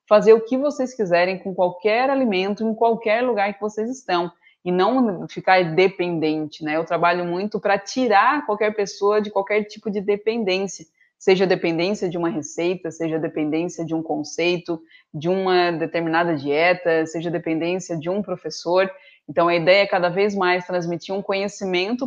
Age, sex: 20-39, female